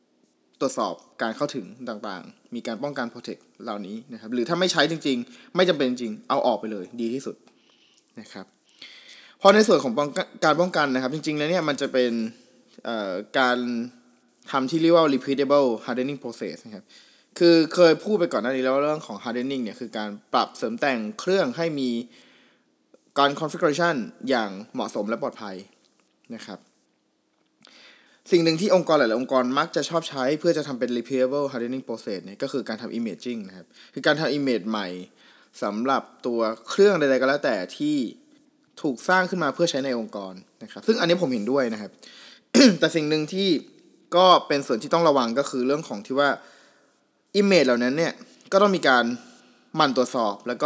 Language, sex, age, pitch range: Thai, male, 20-39, 125-175 Hz